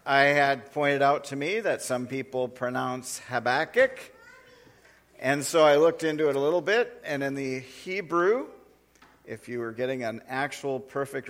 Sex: male